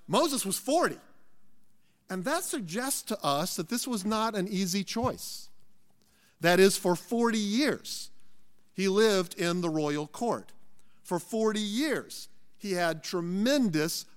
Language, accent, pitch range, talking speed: English, American, 175-255 Hz, 135 wpm